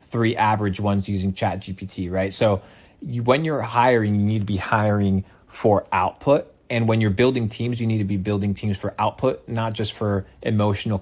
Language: English